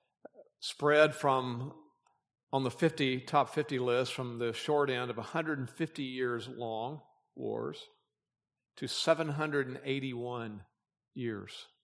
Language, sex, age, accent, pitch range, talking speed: English, male, 50-69, American, 125-155 Hz, 100 wpm